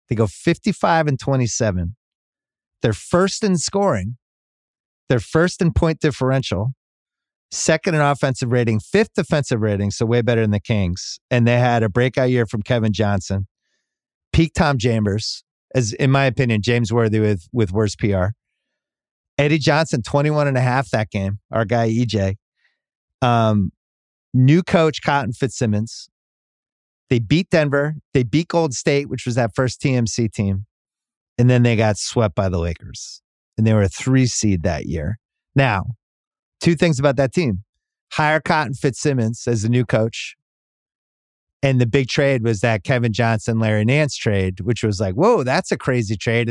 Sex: male